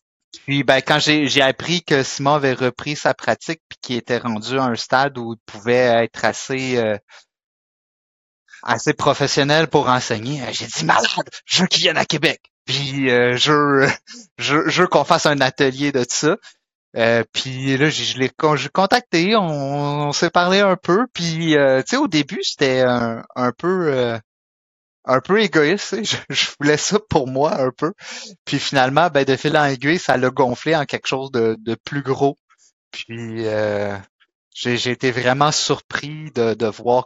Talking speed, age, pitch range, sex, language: 185 wpm, 30-49, 115-150 Hz, male, French